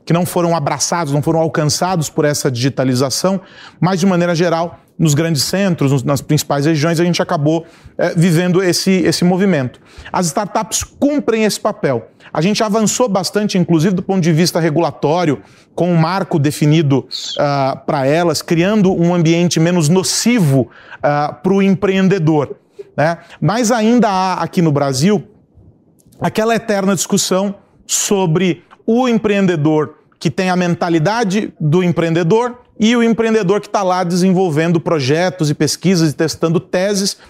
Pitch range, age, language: 160-205 Hz, 40-59, Portuguese